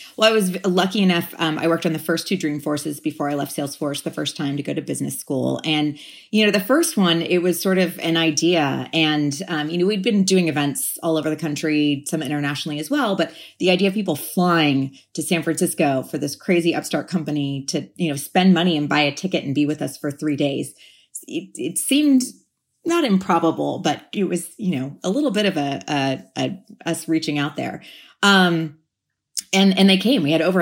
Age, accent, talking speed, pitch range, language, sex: 30-49, American, 220 wpm, 150-185 Hz, English, female